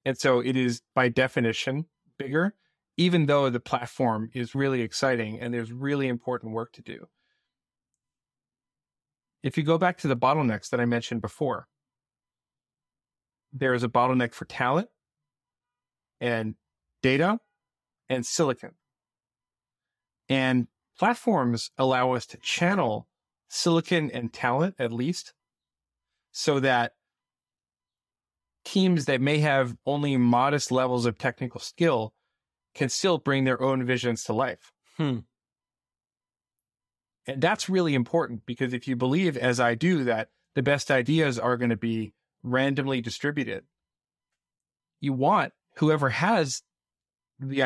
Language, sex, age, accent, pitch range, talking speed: English, male, 30-49, American, 120-145 Hz, 125 wpm